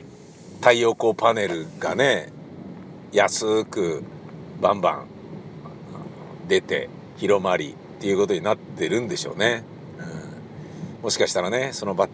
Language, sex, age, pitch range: Japanese, male, 50-69, 100-130 Hz